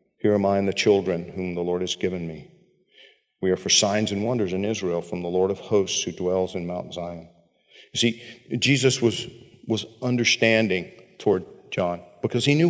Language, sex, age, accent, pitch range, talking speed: English, male, 50-69, American, 105-140 Hz, 195 wpm